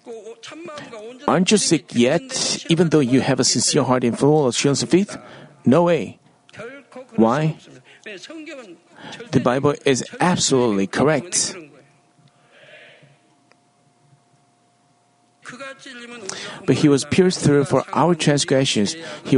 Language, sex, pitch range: Korean, male, 130-175 Hz